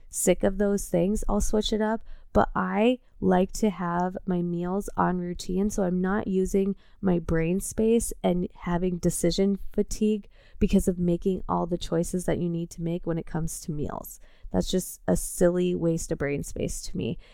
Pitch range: 170-195 Hz